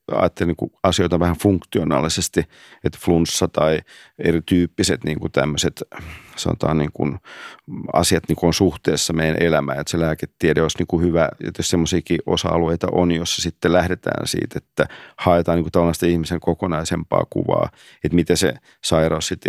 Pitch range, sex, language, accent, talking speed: 85-95 Hz, male, Finnish, native, 150 wpm